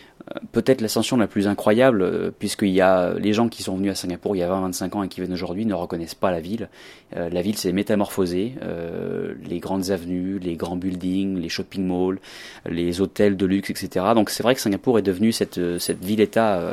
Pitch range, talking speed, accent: 90-110 Hz, 200 wpm, French